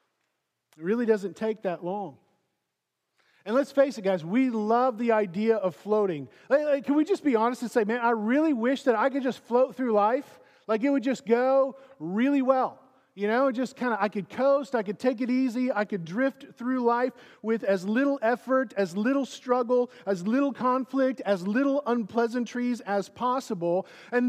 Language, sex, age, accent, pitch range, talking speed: English, male, 40-59, American, 195-255 Hz, 190 wpm